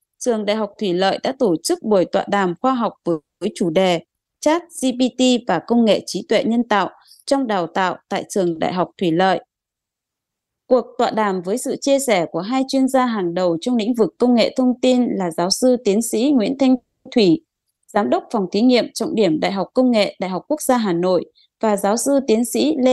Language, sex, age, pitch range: Japanese, female, 20-39, 200-265 Hz